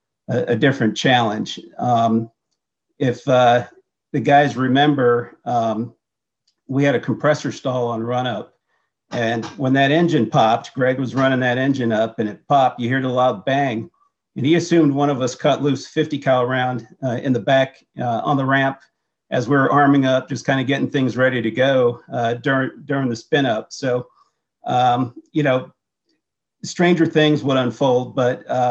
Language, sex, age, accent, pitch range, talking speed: English, male, 50-69, American, 125-150 Hz, 175 wpm